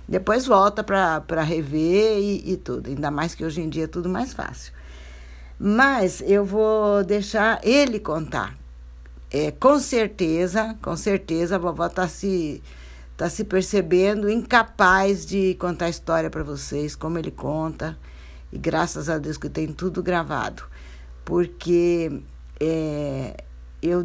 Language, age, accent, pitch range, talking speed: Portuguese, 60-79, Brazilian, 150-205 Hz, 130 wpm